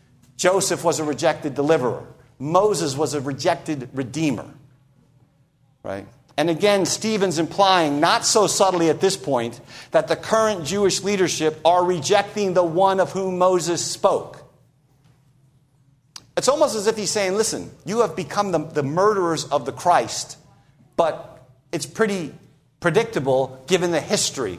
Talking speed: 140 wpm